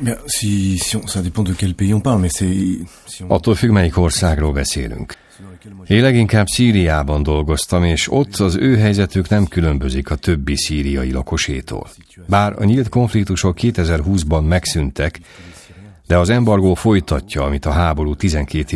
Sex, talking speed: male, 110 wpm